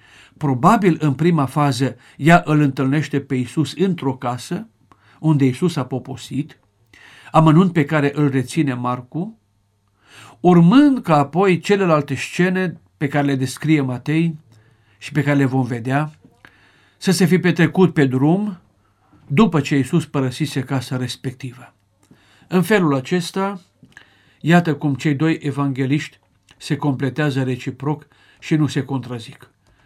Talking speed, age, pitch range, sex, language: 130 wpm, 50-69, 125-160 Hz, male, Romanian